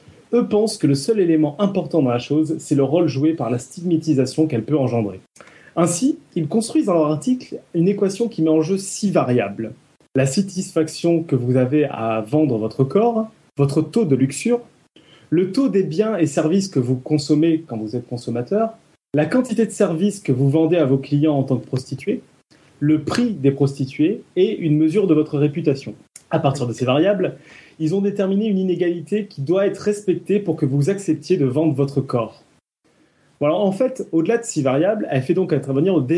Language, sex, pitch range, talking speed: French, male, 135-190 Hz, 195 wpm